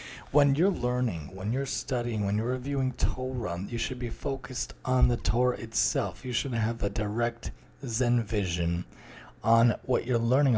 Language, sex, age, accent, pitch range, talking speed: English, male, 40-59, American, 105-130 Hz, 165 wpm